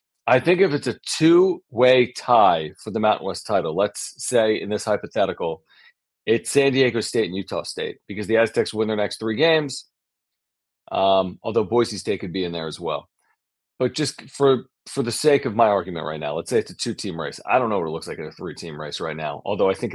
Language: English